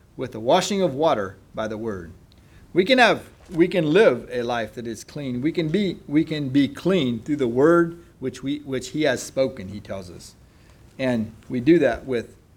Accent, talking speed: American, 205 wpm